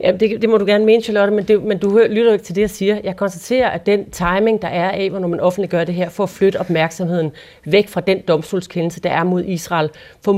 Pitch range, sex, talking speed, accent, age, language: 175-210 Hz, female, 255 wpm, native, 40-59, Danish